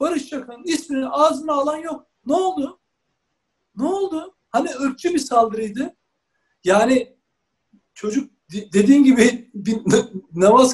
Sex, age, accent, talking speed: male, 60-79, native, 105 wpm